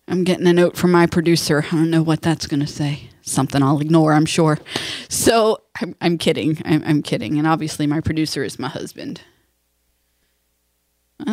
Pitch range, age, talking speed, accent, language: 160-225 Hz, 20-39, 190 wpm, American, English